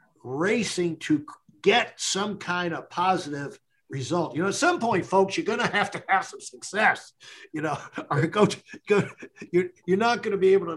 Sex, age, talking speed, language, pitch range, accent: male, 60-79, 200 wpm, English, 150-205 Hz, American